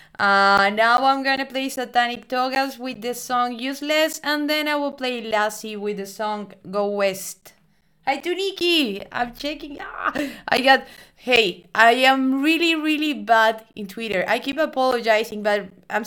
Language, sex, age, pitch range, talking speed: English, female, 20-39, 200-255 Hz, 165 wpm